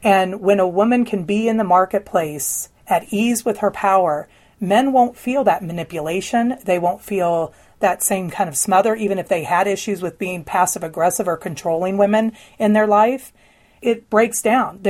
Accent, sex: American, female